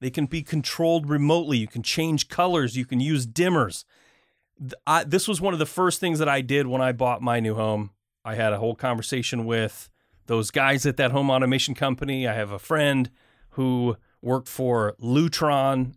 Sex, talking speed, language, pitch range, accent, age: male, 190 wpm, English, 120-165 Hz, American, 30-49